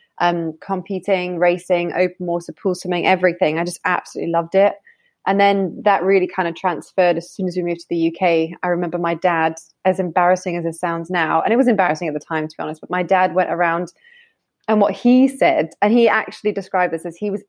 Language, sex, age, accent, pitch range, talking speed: English, female, 20-39, British, 170-200 Hz, 225 wpm